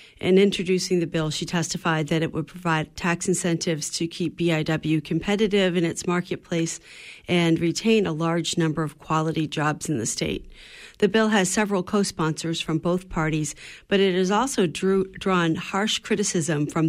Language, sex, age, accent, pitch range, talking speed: English, female, 40-59, American, 160-190 Hz, 165 wpm